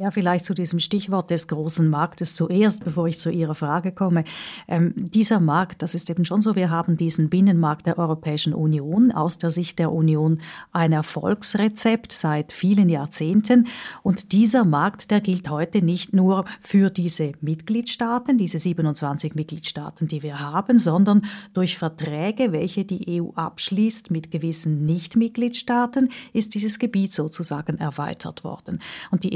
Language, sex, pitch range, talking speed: German, female, 160-215 Hz, 155 wpm